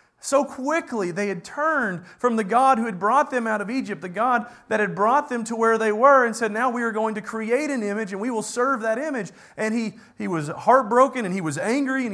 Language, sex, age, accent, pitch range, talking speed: English, male, 30-49, American, 165-220 Hz, 250 wpm